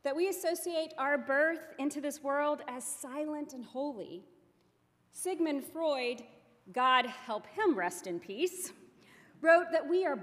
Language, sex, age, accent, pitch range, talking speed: English, female, 40-59, American, 205-315 Hz, 140 wpm